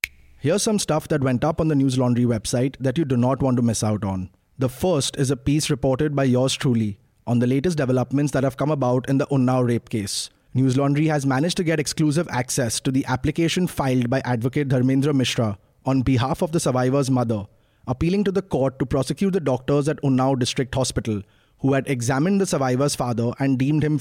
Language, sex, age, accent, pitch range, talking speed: English, male, 30-49, Indian, 125-150 Hz, 210 wpm